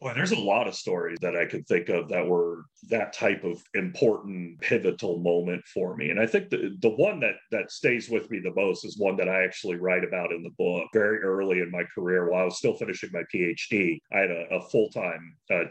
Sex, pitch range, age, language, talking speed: male, 95-130 Hz, 40-59, English, 235 wpm